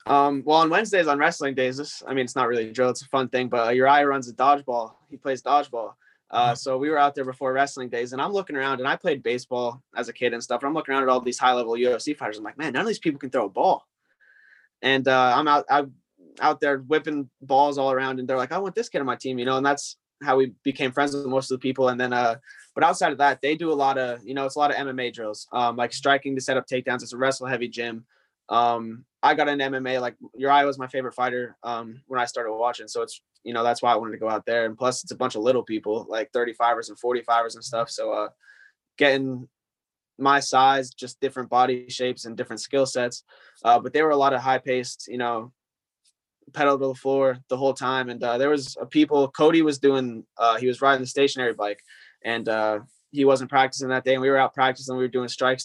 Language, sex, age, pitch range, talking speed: English, male, 20-39, 120-140 Hz, 260 wpm